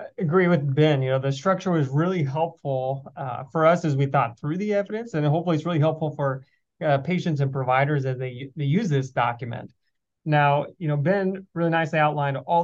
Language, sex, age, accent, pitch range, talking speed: English, male, 30-49, American, 140-170 Hz, 205 wpm